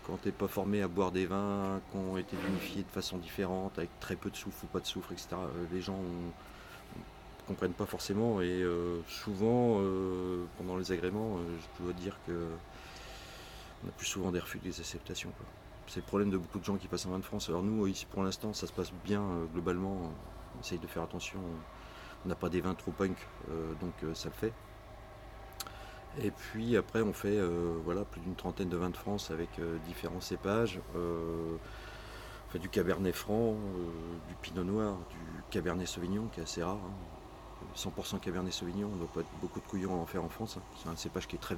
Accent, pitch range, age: French, 90-105 Hz, 30-49